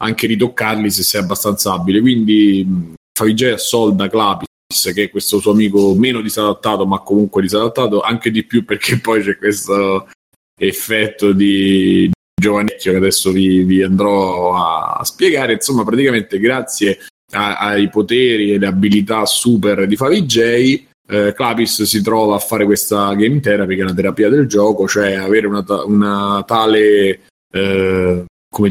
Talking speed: 150 wpm